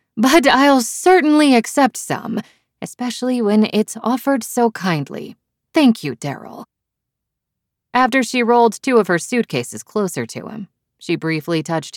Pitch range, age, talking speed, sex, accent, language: 135-215 Hz, 20-39, 135 wpm, female, American, English